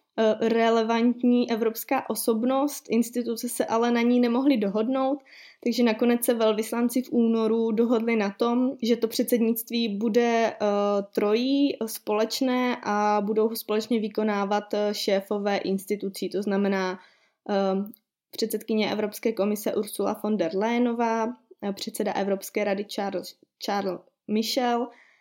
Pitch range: 205-245 Hz